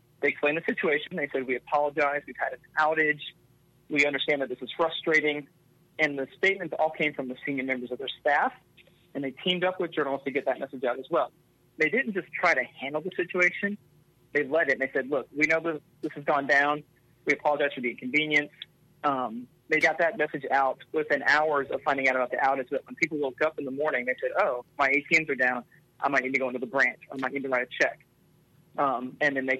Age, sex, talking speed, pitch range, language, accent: 30-49, male, 235 wpm, 130-160 Hz, English, American